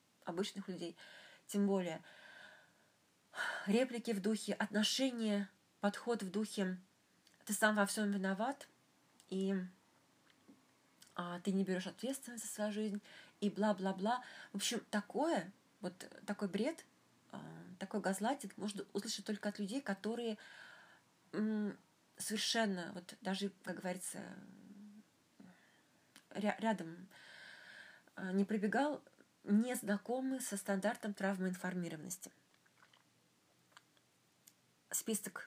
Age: 20-39